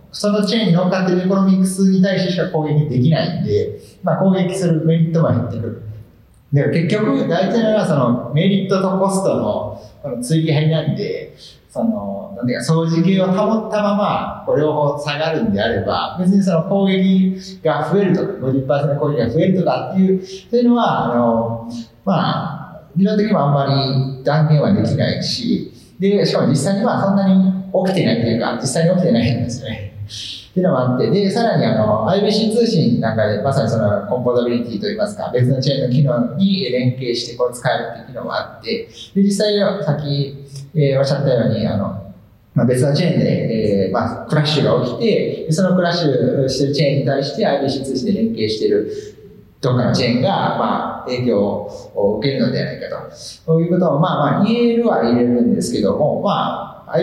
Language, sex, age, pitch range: Japanese, male, 40-59, 130-195 Hz